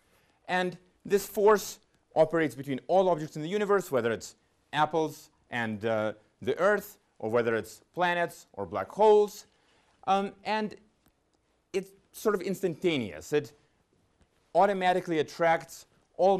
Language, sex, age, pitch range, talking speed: English, male, 30-49, 125-185 Hz, 125 wpm